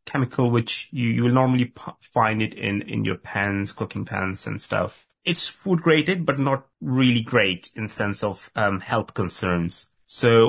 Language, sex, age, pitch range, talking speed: English, male, 30-49, 95-125 Hz, 175 wpm